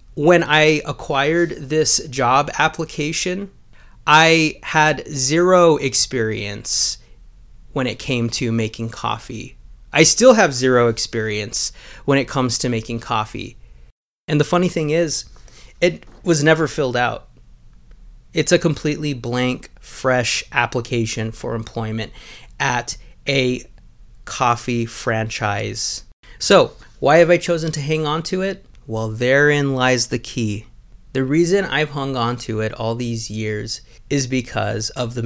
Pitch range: 115-155 Hz